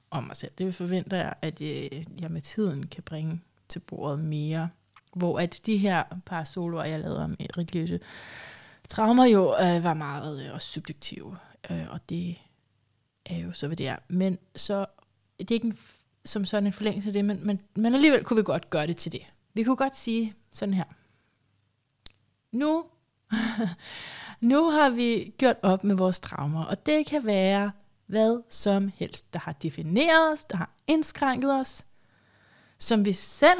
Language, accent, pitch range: Danish, native, 155-220 Hz